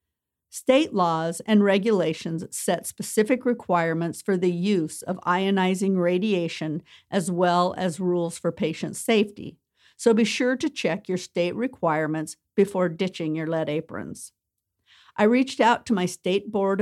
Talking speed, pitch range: 145 wpm, 170-210 Hz